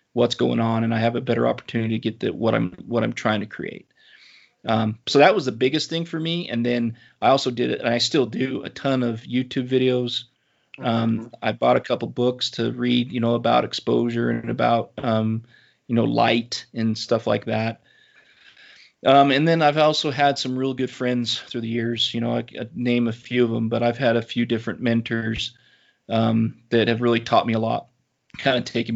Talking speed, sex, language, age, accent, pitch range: 220 wpm, male, English, 30-49, American, 115-125 Hz